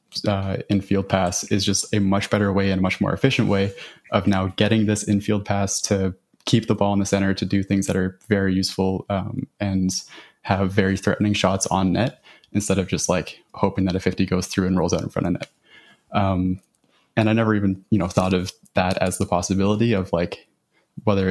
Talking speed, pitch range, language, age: 215 wpm, 95-105 Hz, English, 20-39